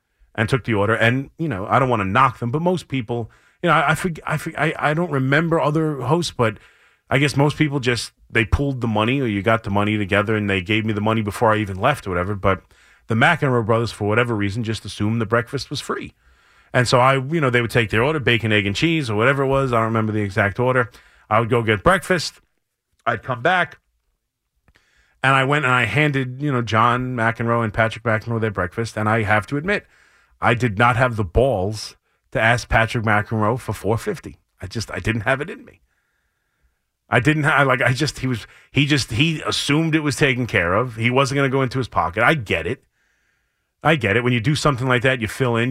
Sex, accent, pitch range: male, American, 110-140 Hz